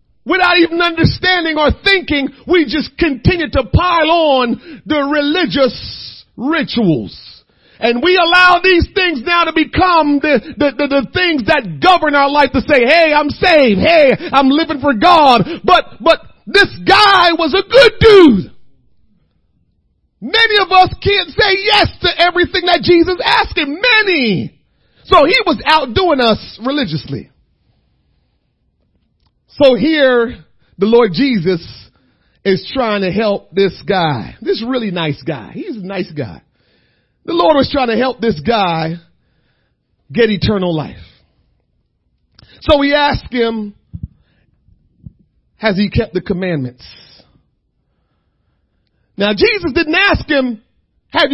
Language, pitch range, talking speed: English, 235-345 Hz, 130 wpm